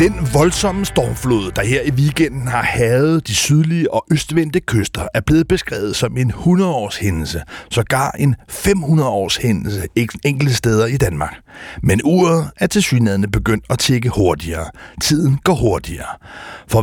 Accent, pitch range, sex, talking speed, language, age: native, 115-160 Hz, male, 150 wpm, Danish, 60-79